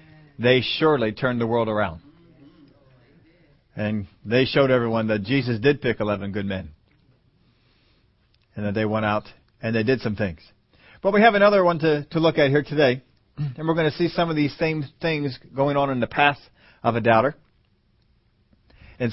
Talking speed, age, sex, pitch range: 180 wpm, 40-59, male, 115-155 Hz